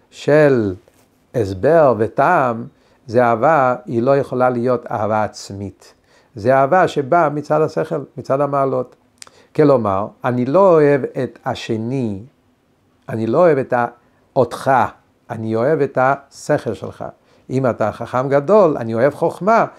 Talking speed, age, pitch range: 125 wpm, 50-69, 135-185 Hz